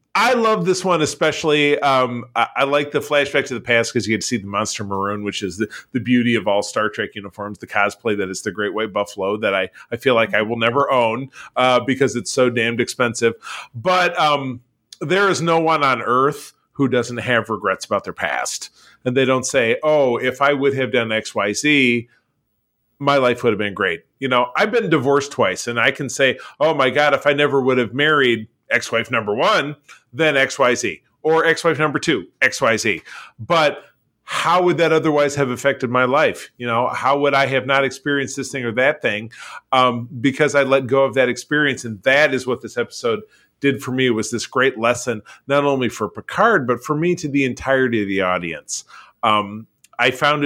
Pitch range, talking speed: 115-145 Hz, 210 wpm